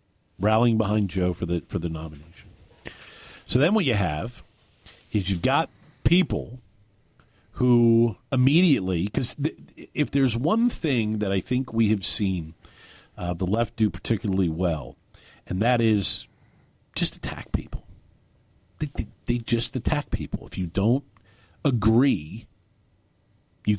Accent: American